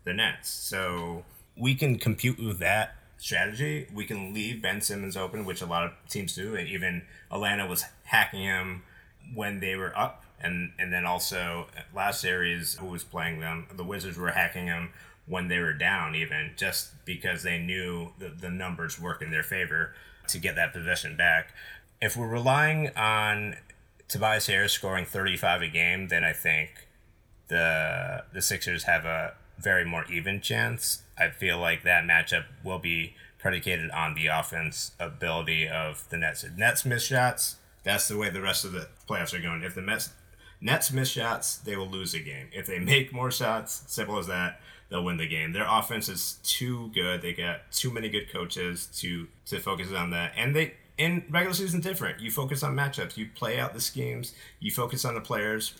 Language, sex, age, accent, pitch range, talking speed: English, male, 30-49, American, 85-115 Hz, 190 wpm